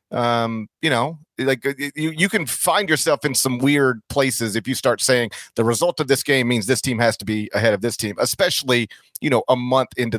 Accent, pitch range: American, 115-140 Hz